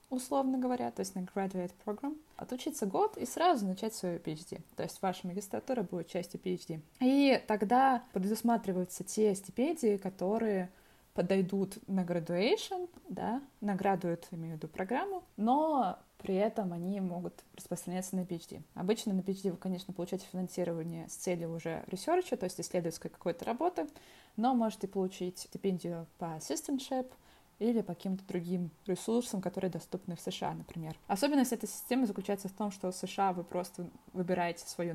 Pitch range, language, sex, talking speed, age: 175-225 Hz, Russian, female, 155 wpm, 20-39